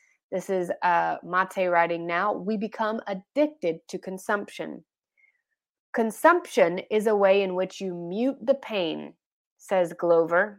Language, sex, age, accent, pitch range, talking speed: English, female, 20-39, American, 180-235 Hz, 130 wpm